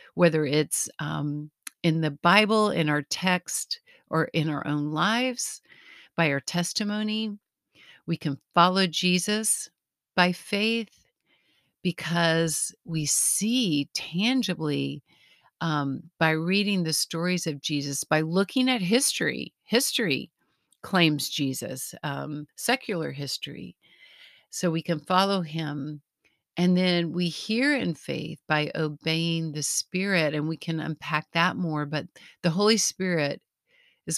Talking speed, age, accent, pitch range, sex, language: 125 wpm, 50-69, American, 150-185 Hz, female, English